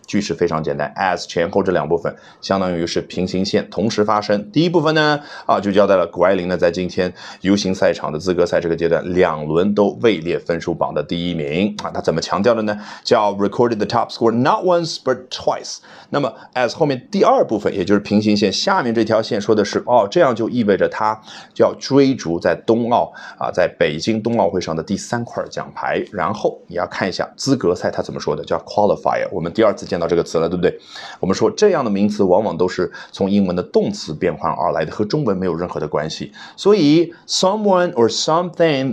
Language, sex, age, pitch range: Chinese, male, 30-49, 95-135 Hz